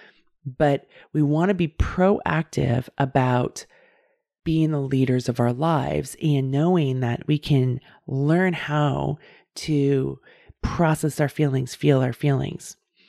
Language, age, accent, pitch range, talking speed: English, 30-49, American, 135-180 Hz, 125 wpm